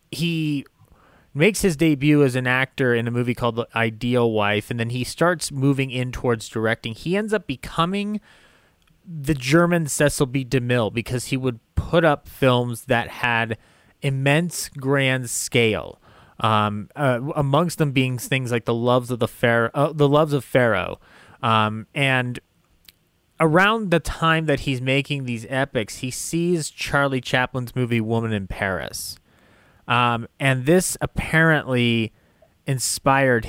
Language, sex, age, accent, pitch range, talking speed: English, male, 30-49, American, 115-145 Hz, 145 wpm